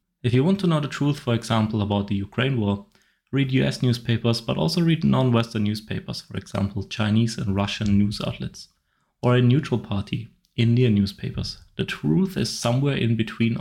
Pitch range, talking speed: 100-125 Hz, 175 wpm